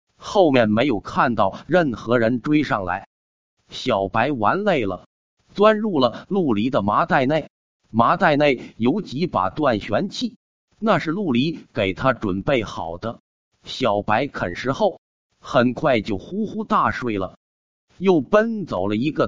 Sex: male